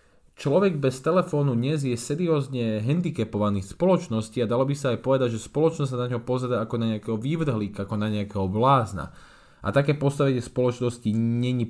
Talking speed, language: 170 wpm, English